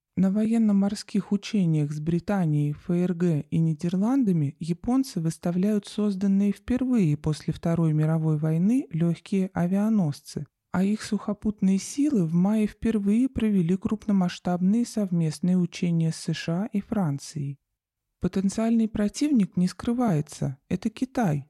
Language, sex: Russian, male